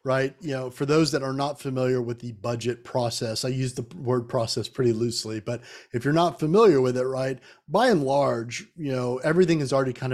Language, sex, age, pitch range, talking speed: English, male, 30-49, 125-150 Hz, 220 wpm